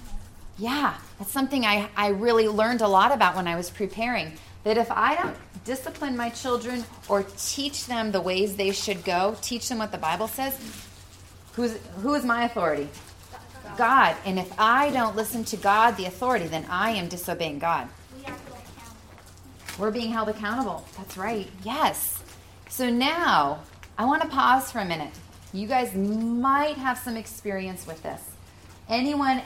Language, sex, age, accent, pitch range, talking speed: English, female, 30-49, American, 170-240 Hz, 165 wpm